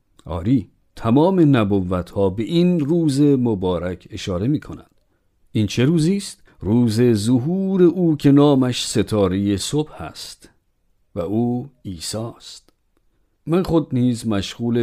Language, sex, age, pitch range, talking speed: Persian, male, 50-69, 95-135 Hz, 115 wpm